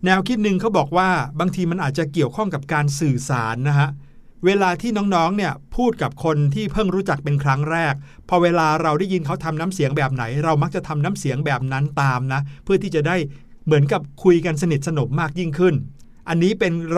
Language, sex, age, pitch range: Thai, male, 60-79, 140-185 Hz